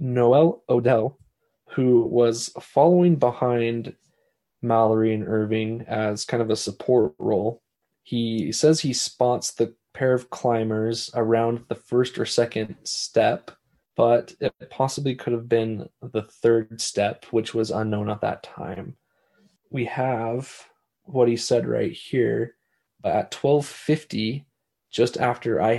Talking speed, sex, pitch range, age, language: 135 wpm, male, 115-130 Hz, 20-39, English